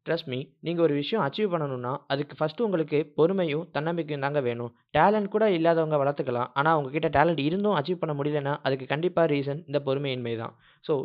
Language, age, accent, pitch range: Tamil, 20-39, native, 130-165 Hz